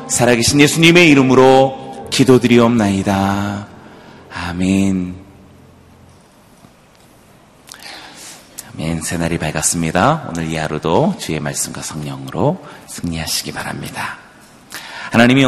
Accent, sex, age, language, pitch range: native, male, 40-59, Korean, 90-110 Hz